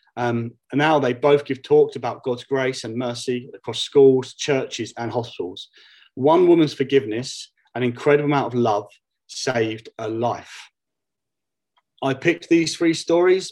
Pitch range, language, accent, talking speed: 120-150 Hz, English, British, 145 wpm